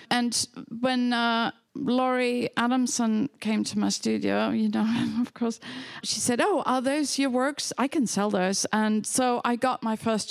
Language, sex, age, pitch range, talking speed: English, female, 50-69, 210-250 Hz, 175 wpm